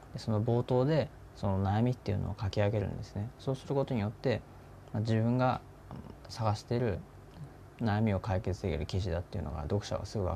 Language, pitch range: Japanese, 95-115 Hz